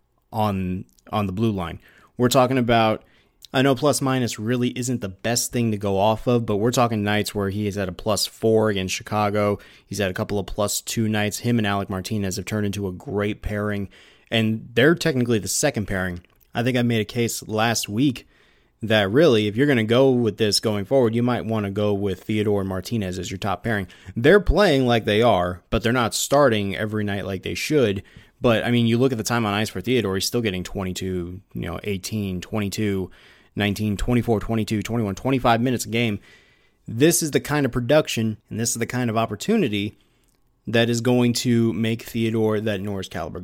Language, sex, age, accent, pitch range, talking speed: English, male, 30-49, American, 100-125 Hz, 205 wpm